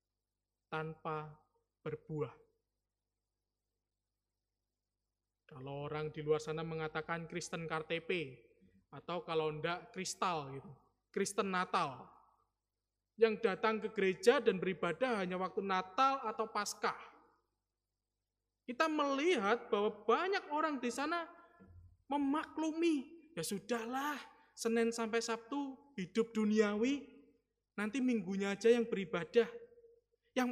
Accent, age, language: native, 20-39, Indonesian